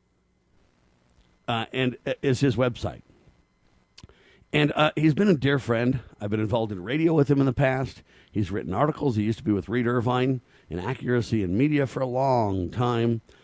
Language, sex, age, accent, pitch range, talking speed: English, male, 50-69, American, 105-135 Hz, 180 wpm